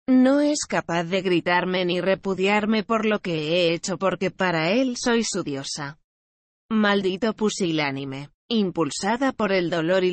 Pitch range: 165-195 Hz